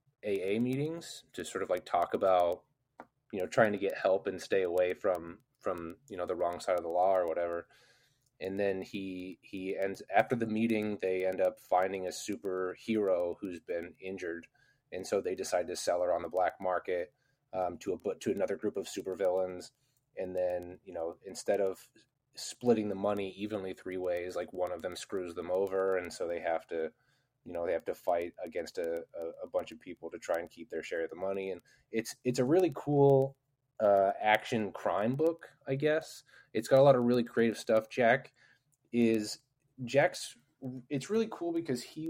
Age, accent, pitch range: 20-39, American, 95-145 Hz